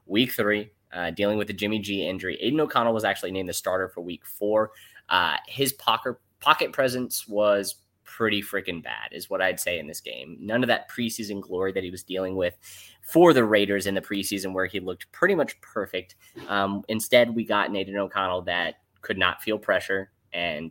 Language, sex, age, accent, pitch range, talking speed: English, male, 10-29, American, 95-115 Hz, 205 wpm